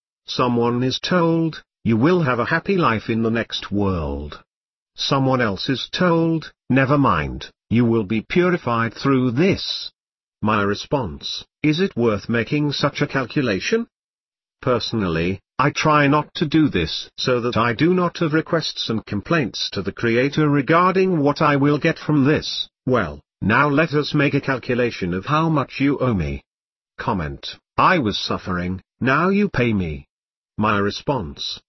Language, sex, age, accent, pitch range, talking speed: English, male, 50-69, British, 110-150 Hz, 155 wpm